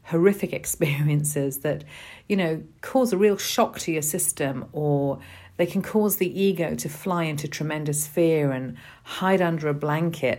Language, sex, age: English, female, 40-59